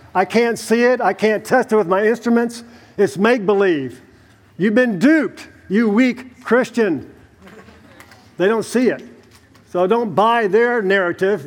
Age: 50-69